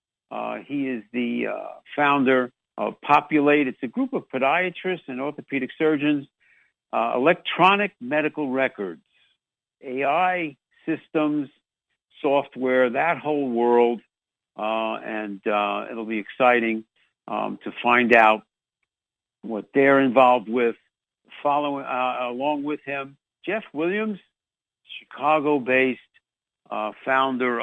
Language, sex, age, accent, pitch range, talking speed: English, male, 60-79, American, 115-150 Hz, 105 wpm